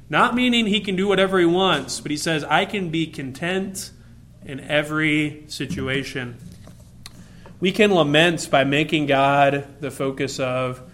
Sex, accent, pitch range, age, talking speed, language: male, American, 130-175 Hz, 30-49, 150 wpm, English